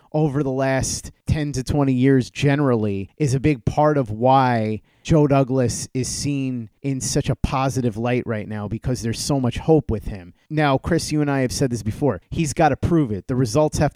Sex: male